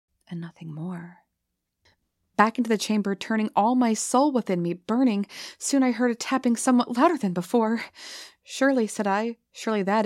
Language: English